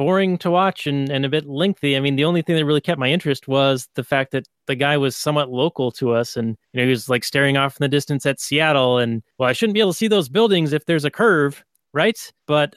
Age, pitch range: 30-49, 130-170 Hz